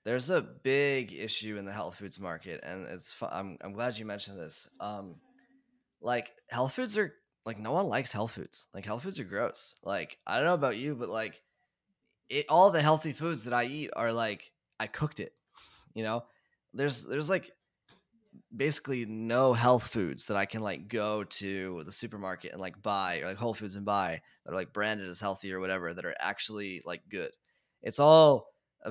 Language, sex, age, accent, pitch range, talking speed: English, male, 10-29, American, 100-130 Hz, 200 wpm